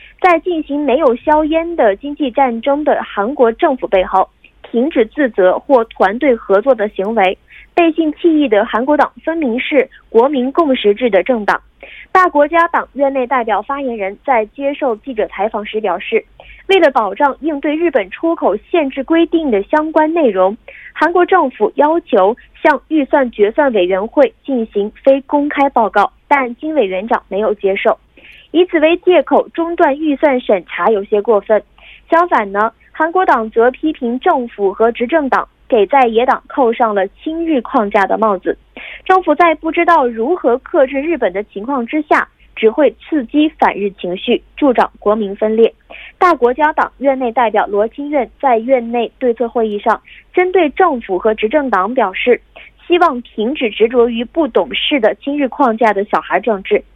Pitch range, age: 220-315 Hz, 20-39